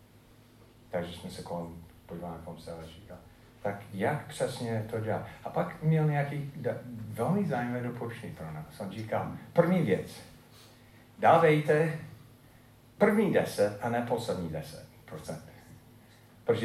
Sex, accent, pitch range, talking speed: male, native, 115-150 Hz, 125 wpm